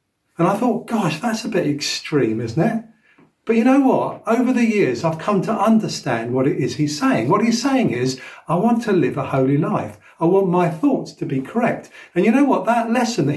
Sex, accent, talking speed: male, British, 230 wpm